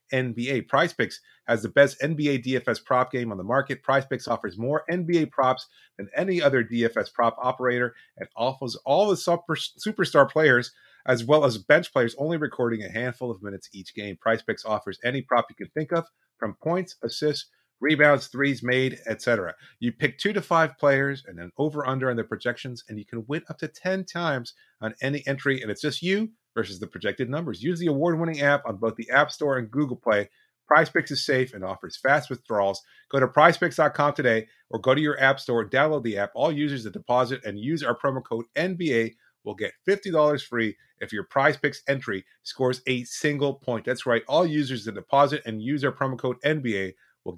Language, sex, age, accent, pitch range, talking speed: English, male, 30-49, American, 115-150 Hz, 205 wpm